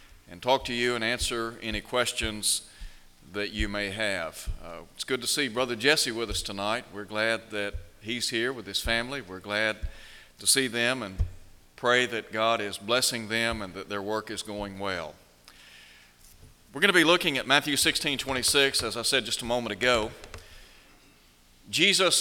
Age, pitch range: 40-59, 90-140 Hz